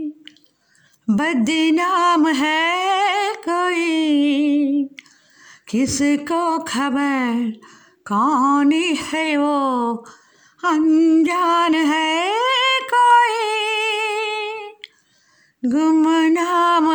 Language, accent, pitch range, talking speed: Hindi, native, 310-425 Hz, 45 wpm